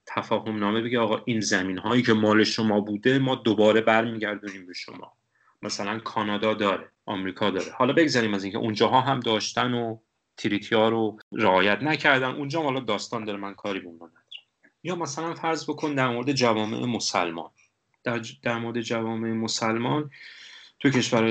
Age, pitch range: 30-49, 105-130 Hz